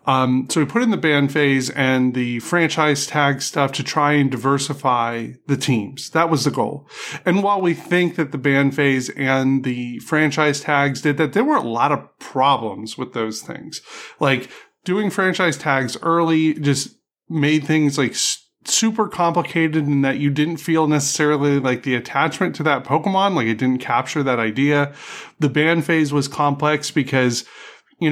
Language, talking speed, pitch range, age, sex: English, 175 wpm, 135-160 Hz, 30-49, male